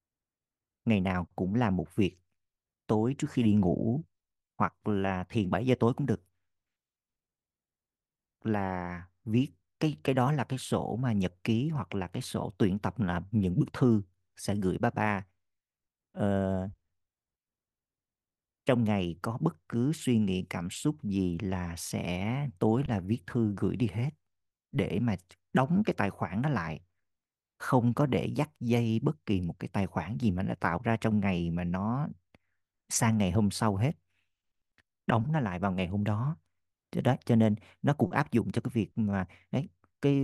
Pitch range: 90-115 Hz